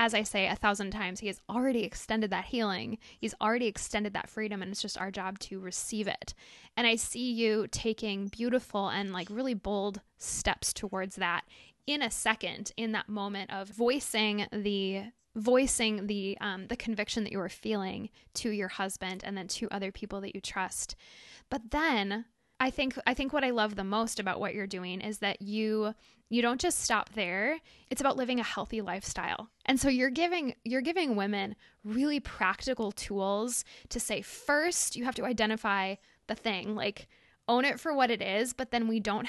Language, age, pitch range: English, 10-29, 200-250 Hz